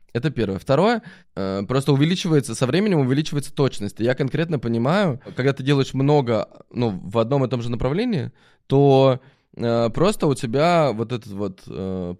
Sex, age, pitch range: male, 20-39, 115-150 Hz